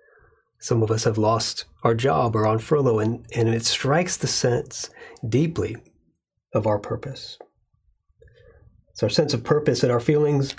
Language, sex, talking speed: English, male, 160 wpm